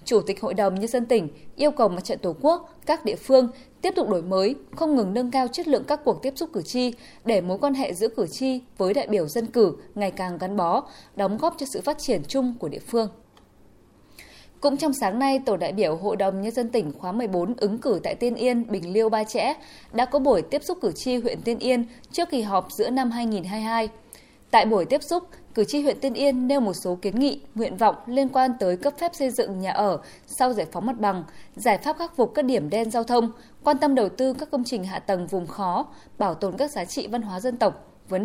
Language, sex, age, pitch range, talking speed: Vietnamese, female, 20-39, 200-270 Hz, 245 wpm